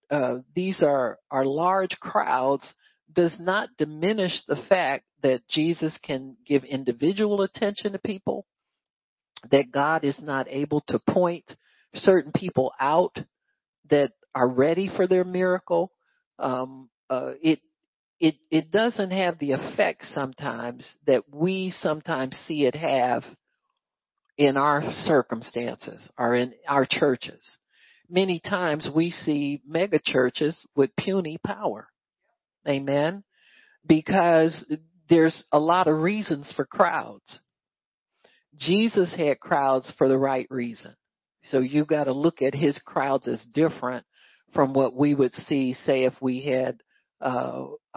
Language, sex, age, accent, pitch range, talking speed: English, male, 50-69, American, 135-175 Hz, 130 wpm